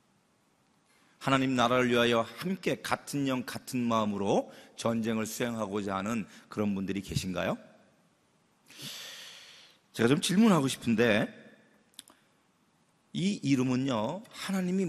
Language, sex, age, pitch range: Korean, male, 40-59, 125-175 Hz